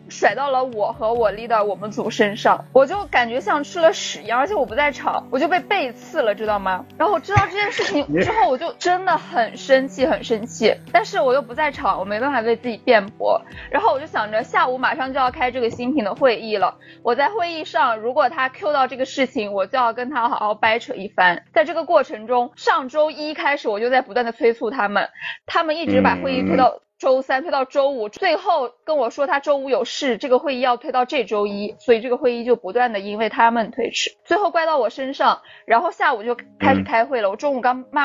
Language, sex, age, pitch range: Chinese, female, 20-39, 230-290 Hz